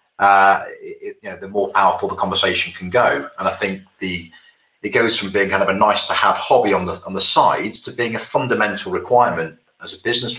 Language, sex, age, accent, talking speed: English, male, 30-49, British, 225 wpm